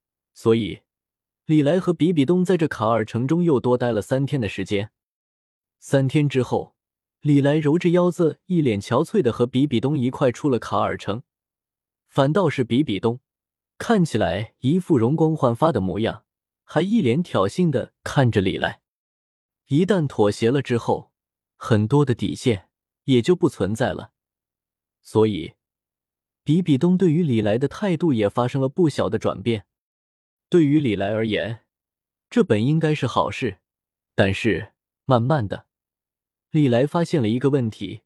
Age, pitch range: 20-39, 110-155 Hz